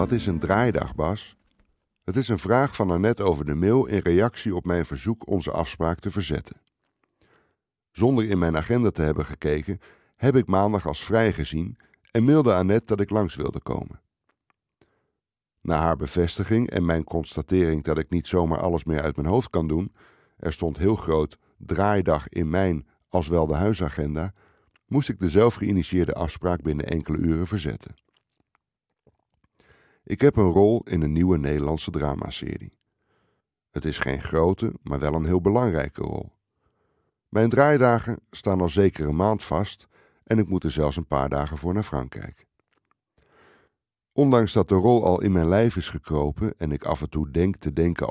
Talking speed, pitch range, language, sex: 170 wpm, 80-105 Hz, Dutch, male